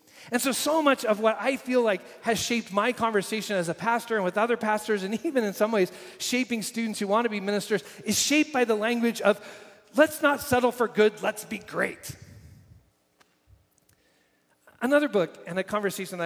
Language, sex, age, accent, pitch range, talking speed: English, male, 40-59, American, 155-225 Hz, 190 wpm